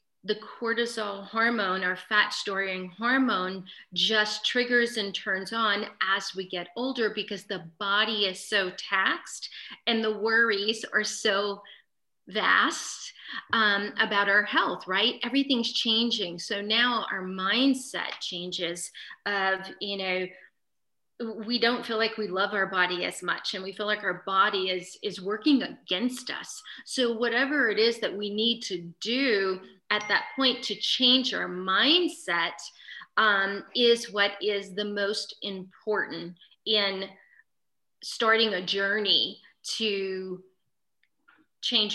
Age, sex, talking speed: 40-59, female, 135 wpm